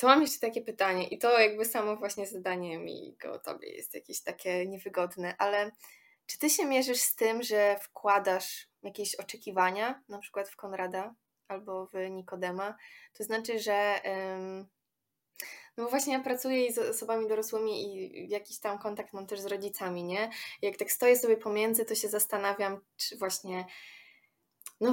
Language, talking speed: Polish, 160 wpm